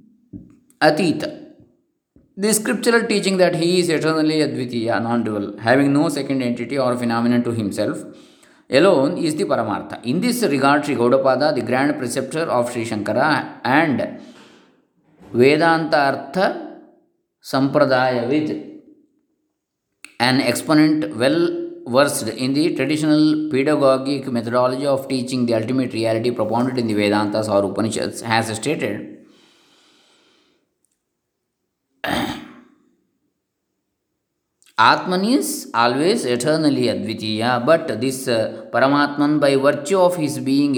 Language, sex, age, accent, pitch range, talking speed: Kannada, male, 20-39, native, 120-165 Hz, 110 wpm